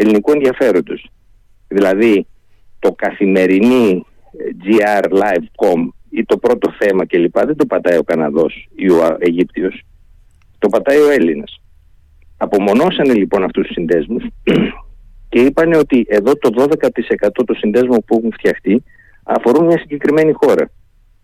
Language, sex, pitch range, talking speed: Greek, male, 90-145 Hz, 120 wpm